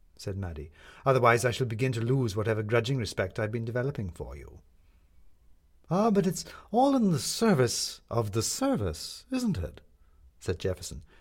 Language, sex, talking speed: English, male, 165 wpm